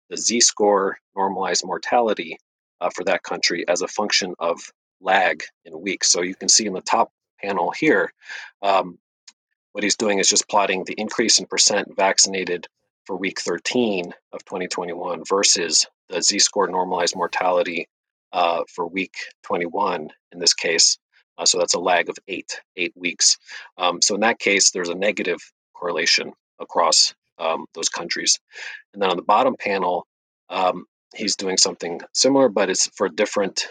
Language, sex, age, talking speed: English, male, 40-59, 160 wpm